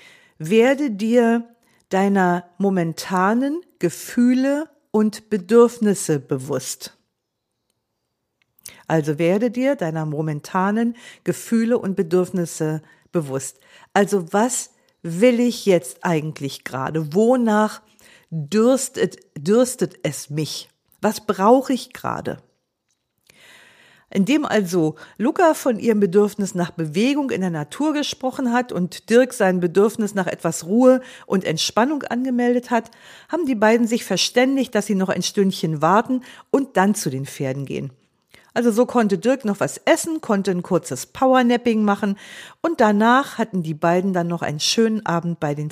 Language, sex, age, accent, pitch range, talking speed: German, female, 50-69, German, 175-245 Hz, 130 wpm